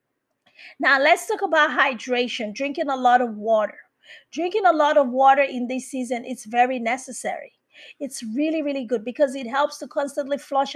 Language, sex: English, female